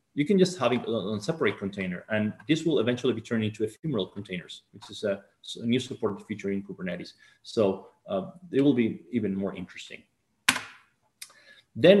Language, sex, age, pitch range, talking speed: English, male, 30-49, 105-140 Hz, 180 wpm